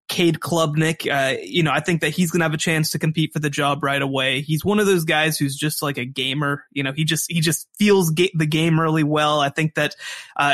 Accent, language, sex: American, English, male